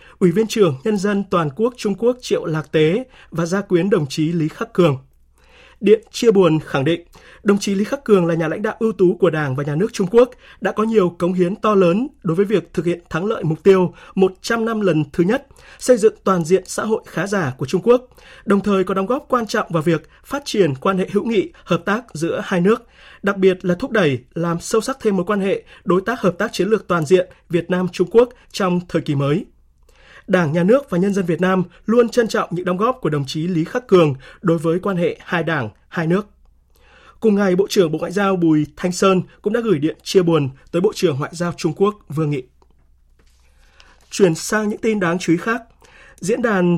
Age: 20-39